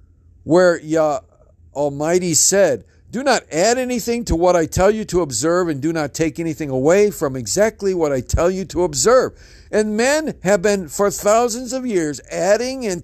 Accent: American